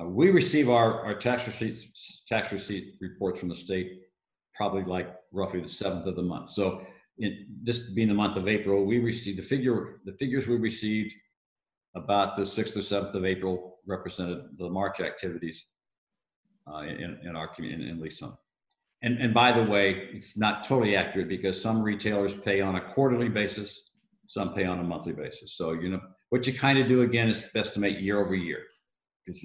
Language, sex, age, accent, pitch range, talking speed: English, male, 60-79, American, 95-120 Hz, 195 wpm